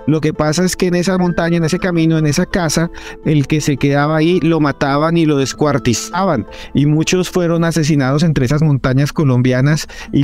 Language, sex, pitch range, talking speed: Spanish, male, 130-155 Hz, 195 wpm